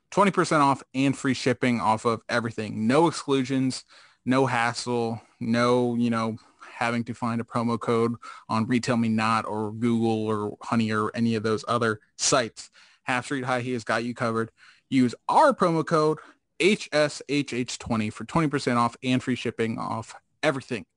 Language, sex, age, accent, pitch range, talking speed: English, male, 20-39, American, 115-135 Hz, 150 wpm